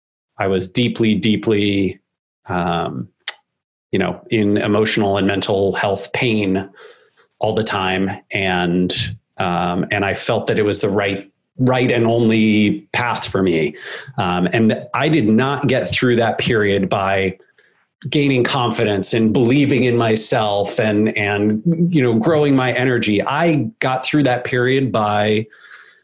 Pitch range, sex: 105-125 Hz, male